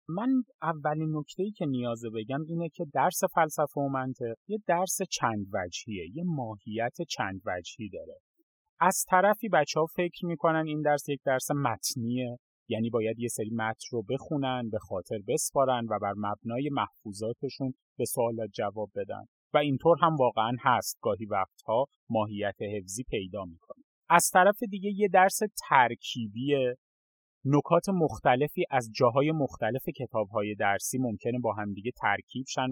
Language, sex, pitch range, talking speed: Persian, male, 115-170 Hz, 140 wpm